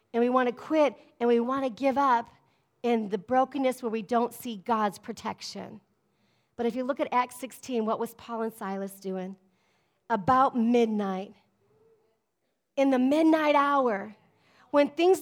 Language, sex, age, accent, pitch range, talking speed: English, female, 40-59, American, 260-350 Hz, 160 wpm